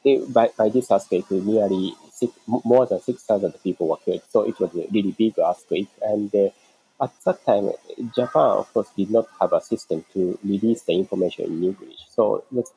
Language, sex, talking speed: English, male, 190 wpm